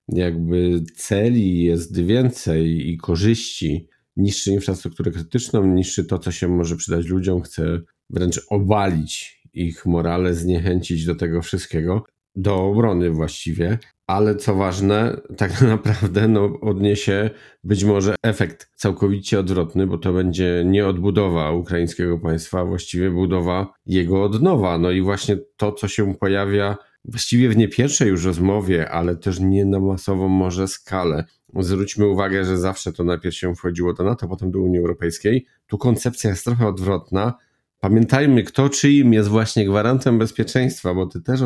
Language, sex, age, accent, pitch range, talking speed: Polish, male, 40-59, native, 90-105 Hz, 145 wpm